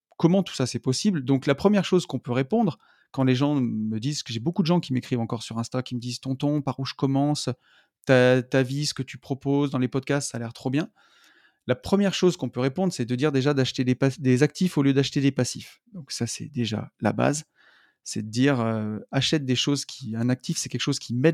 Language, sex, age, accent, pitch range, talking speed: French, male, 30-49, French, 125-150 Hz, 260 wpm